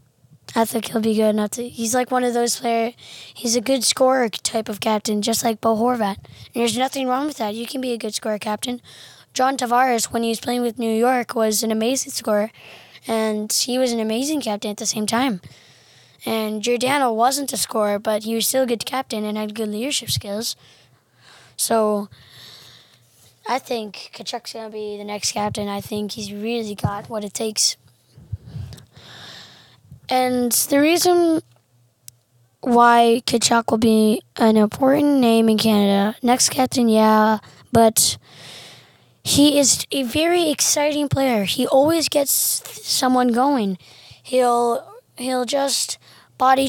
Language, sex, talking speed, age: English, female, 160 wpm, 10-29